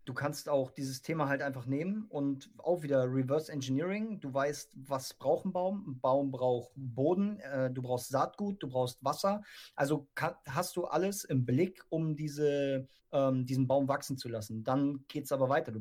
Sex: male